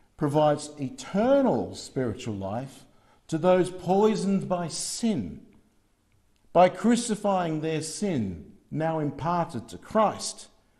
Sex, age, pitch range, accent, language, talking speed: male, 50-69, 105-155 Hz, Australian, English, 95 wpm